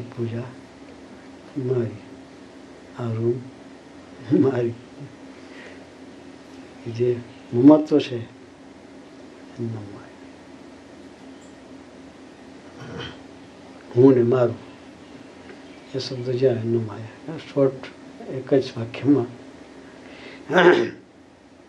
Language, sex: Gujarati, male